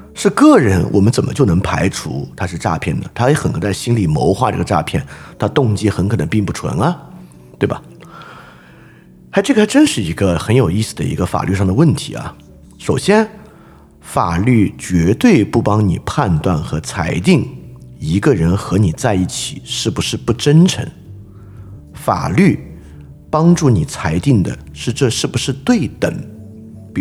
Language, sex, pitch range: Chinese, male, 90-135 Hz